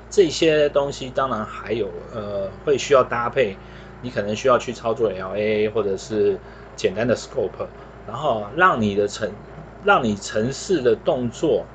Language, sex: Chinese, male